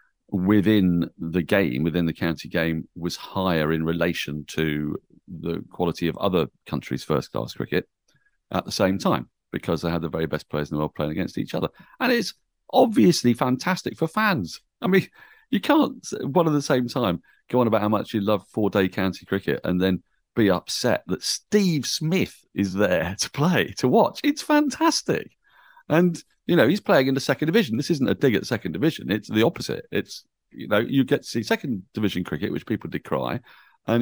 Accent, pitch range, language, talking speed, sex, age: British, 90-135 Hz, English, 200 wpm, male, 40-59